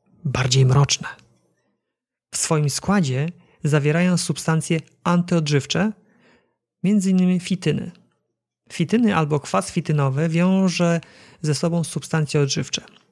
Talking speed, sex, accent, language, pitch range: 85 wpm, male, native, Polish, 150-180 Hz